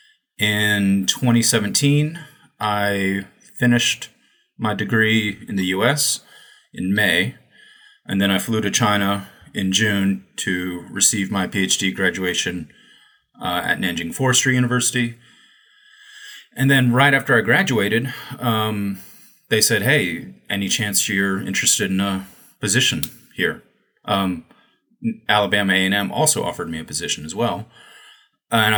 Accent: American